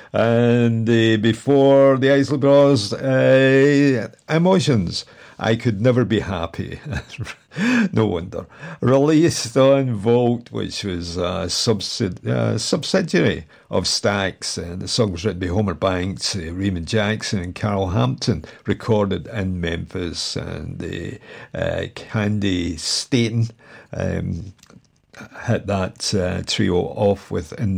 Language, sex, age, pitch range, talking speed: English, male, 50-69, 95-130 Hz, 120 wpm